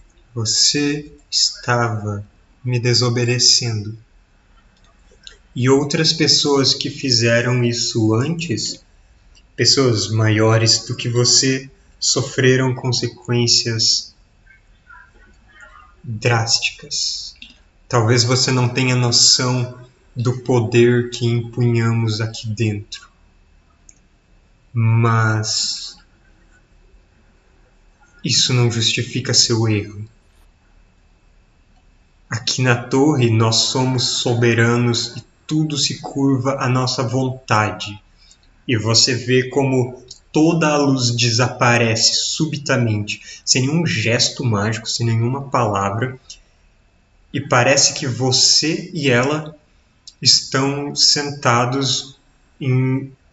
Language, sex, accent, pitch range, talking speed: Portuguese, male, Brazilian, 110-130 Hz, 85 wpm